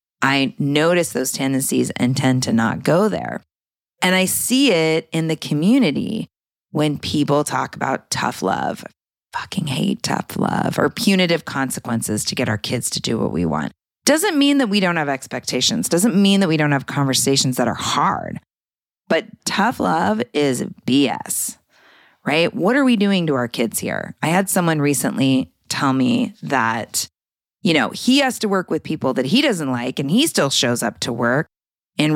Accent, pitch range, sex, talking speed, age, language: American, 130-190 Hz, female, 180 wpm, 30-49, English